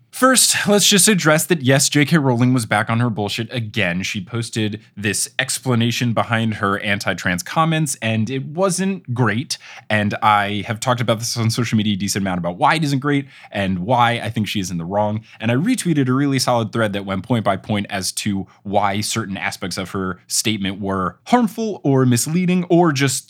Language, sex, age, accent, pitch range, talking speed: English, male, 20-39, American, 105-165 Hz, 200 wpm